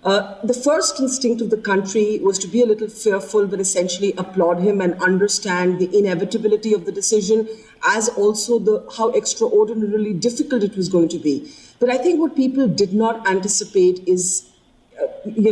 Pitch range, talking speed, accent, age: 190-225 Hz, 180 wpm, Indian, 40-59